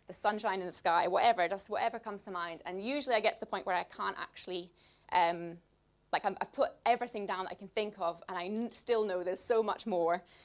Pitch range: 185-225 Hz